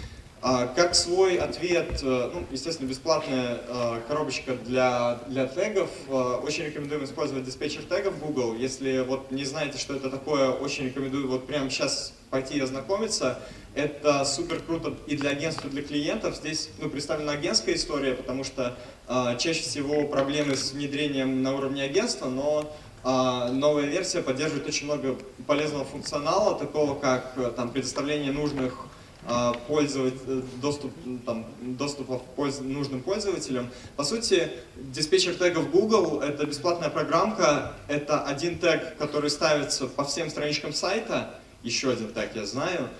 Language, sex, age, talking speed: Russian, male, 20-39, 135 wpm